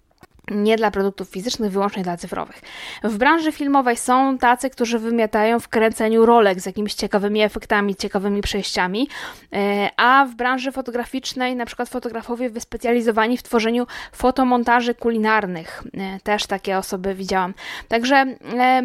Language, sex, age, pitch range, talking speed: Polish, female, 20-39, 210-260 Hz, 125 wpm